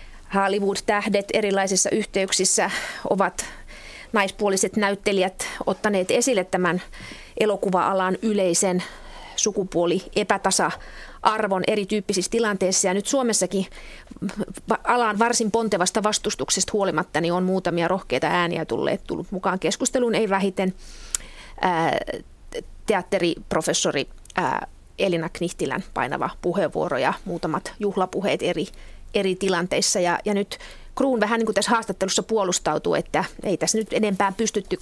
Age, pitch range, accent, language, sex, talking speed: 30-49, 180-215 Hz, native, Finnish, female, 100 wpm